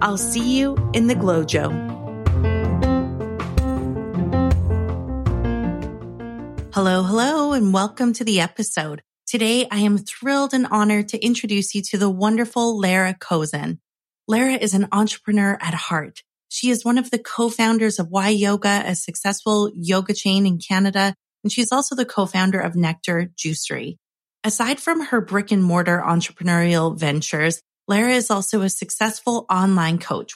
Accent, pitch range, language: American, 170-220 Hz, English